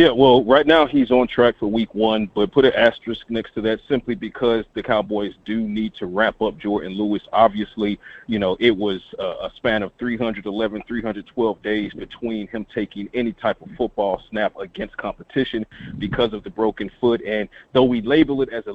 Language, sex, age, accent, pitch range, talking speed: English, male, 40-59, American, 110-130 Hz, 195 wpm